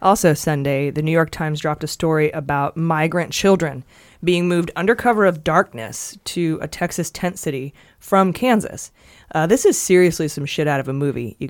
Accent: American